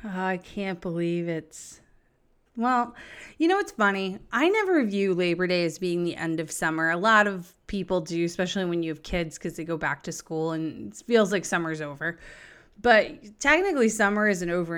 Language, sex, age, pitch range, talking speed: English, female, 30-49, 170-215 Hz, 195 wpm